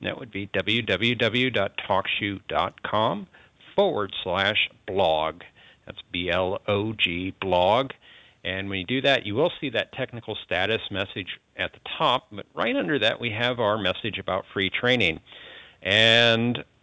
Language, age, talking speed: English, 50-69, 130 wpm